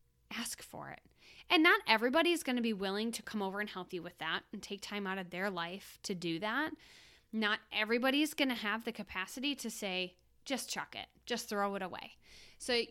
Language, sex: English, female